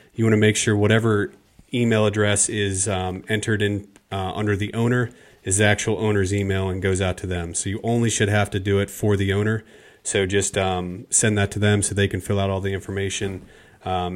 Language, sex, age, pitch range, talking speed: English, male, 30-49, 95-110 Hz, 225 wpm